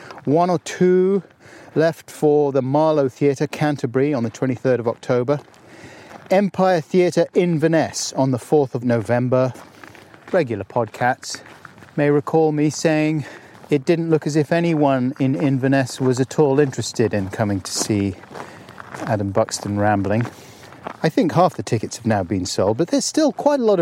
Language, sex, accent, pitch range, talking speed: English, male, British, 115-150 Hz, 155 wpm